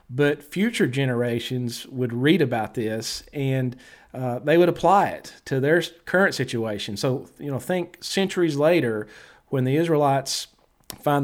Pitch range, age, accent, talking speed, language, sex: 120-155 Hz, 40-59, American, 145 wpm, English, male